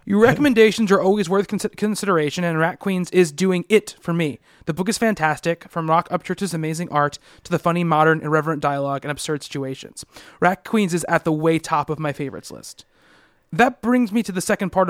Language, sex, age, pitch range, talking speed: English, male, 20-39, 155-195 Hz, 200 wpm